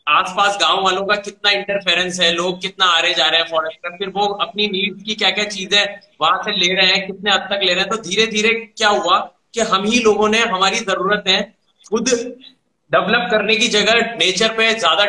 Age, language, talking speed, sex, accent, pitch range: 30-49, Hindi, 225 wpm, male, native, 170-205 Hz